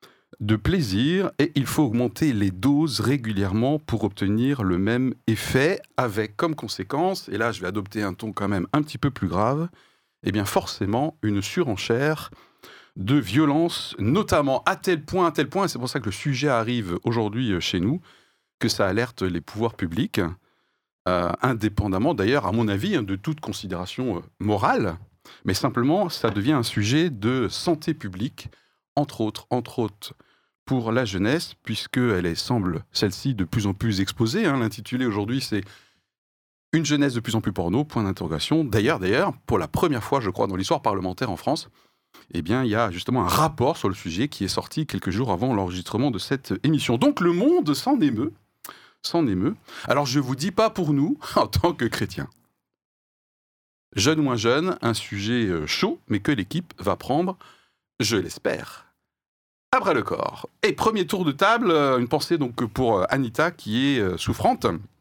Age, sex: 40-59, male